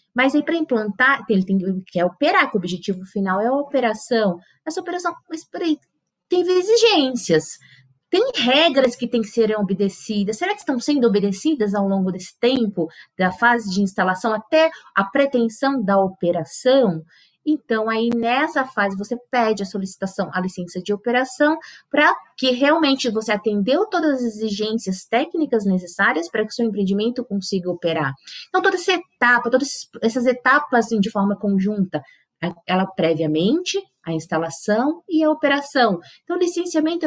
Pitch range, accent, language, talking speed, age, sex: 195-280 Hz, Brazilian, Portuguese, 155 wpm, 20-39, female